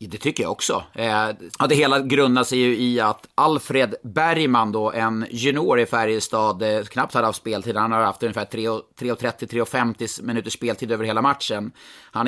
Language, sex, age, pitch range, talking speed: Swedish, male, 30-49, 110-130 Hz, 175 wpm